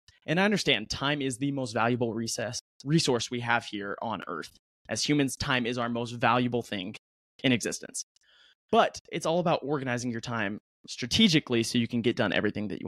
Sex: male